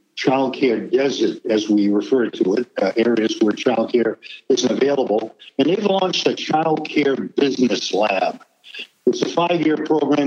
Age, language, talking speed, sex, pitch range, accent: 60-79, English, 160 wpm, male, 125-155 Hz, American